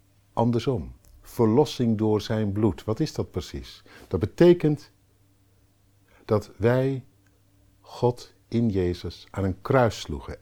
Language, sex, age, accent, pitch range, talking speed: Dutch, male, 50-69, Dutch, 95-115 Hz, 115 wpm